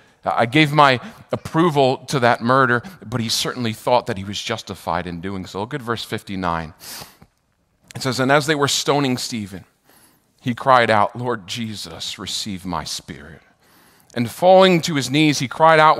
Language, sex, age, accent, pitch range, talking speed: English, male, 40-59, American, 110-175 Hz, 175 wpm